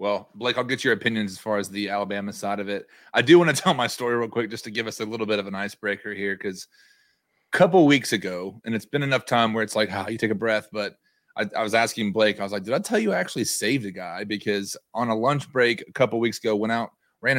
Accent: American